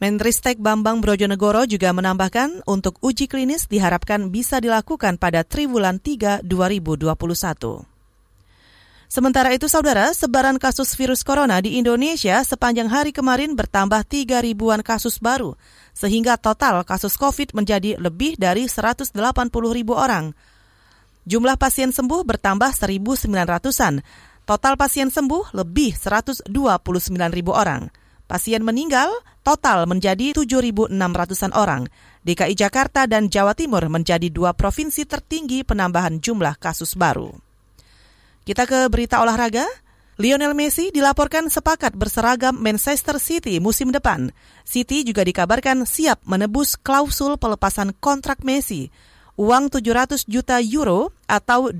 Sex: female